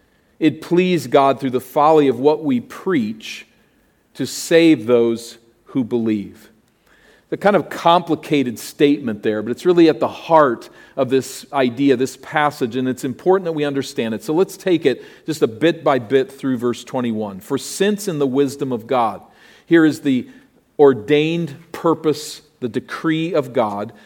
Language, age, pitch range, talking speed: English, 40-59, 135-185 Hz, 165 wpm